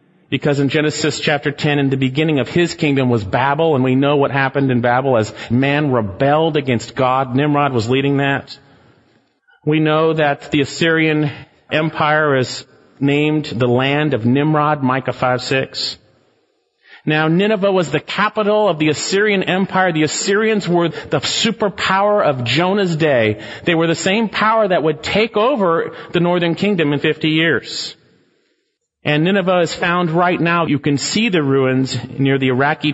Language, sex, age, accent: English, male, 40-59, American